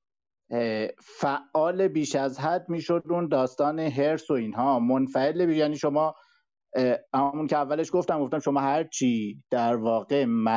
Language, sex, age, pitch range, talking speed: Persian, male, 50-69, 125-180 Hz, 130 wpm